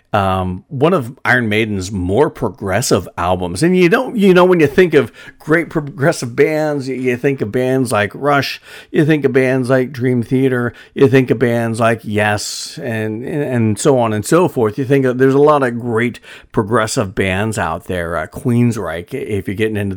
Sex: male